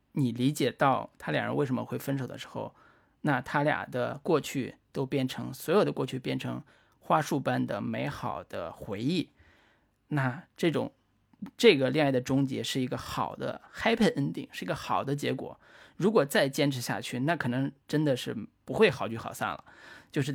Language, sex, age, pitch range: Chinese, male, 20-39, 120-145 Hz